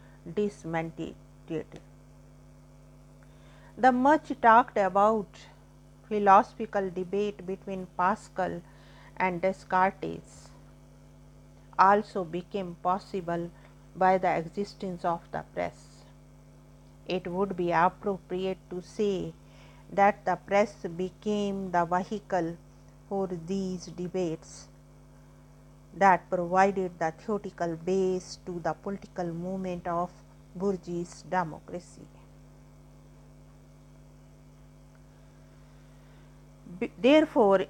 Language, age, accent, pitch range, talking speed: English, 50-69, Indian, 140-200 Hz, 75 wpm